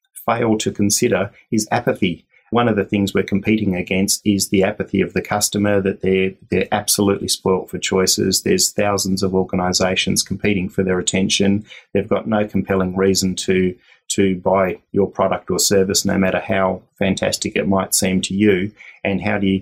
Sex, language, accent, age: male, English, Australian, 30-49